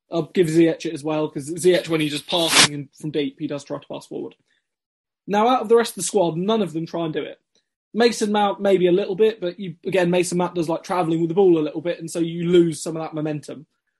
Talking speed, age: 265 wpm, 20-39